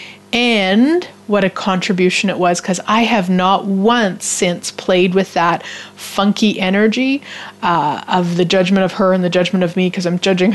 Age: 30-49